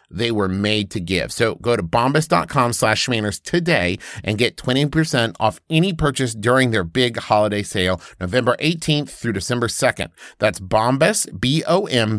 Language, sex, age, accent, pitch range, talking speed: English, male, 30-49, American, 100-145 Hz, 155 wpm